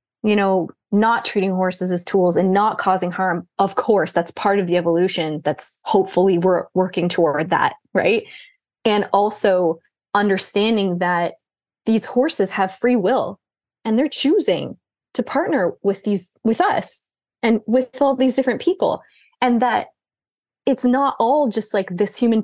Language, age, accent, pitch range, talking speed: English, 20-39, American, 190-250 Hz, 155 wpm